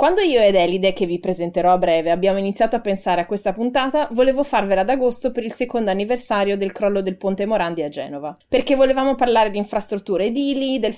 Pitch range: 195-265 Hz